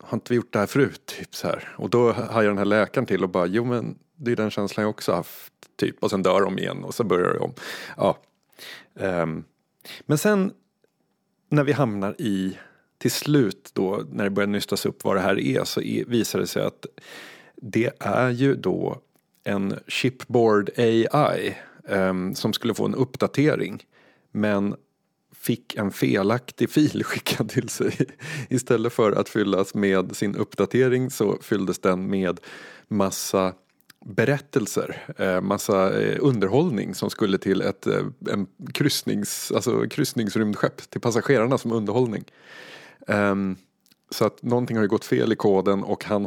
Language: Swedish